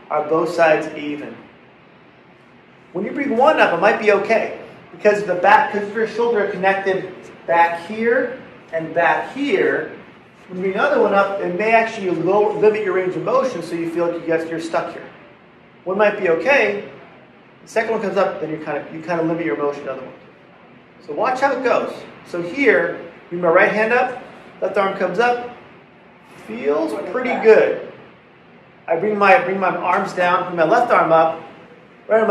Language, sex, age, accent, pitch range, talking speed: English, male, 40-59, American, 170-220 Hz, 190 wpm